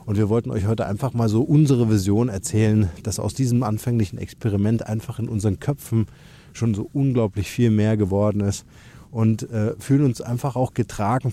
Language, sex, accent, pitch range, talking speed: German, male, German, 100-120 Hz, 180 wpm